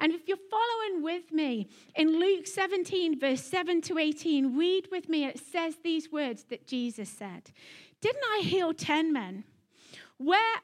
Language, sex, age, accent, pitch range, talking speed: English, female, 30-49, British, 255-345 Hz, 165 wpm